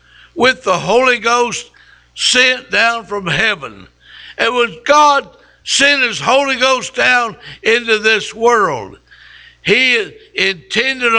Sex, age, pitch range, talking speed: male, 60-79, 180-255 Hz, 115 wpm